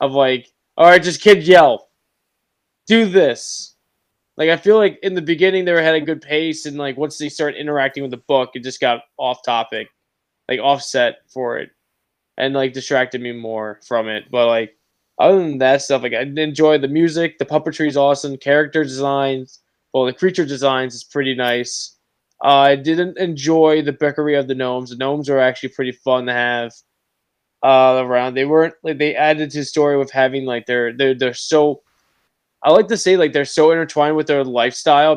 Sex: male